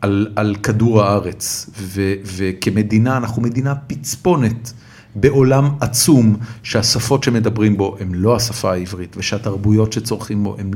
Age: 40-59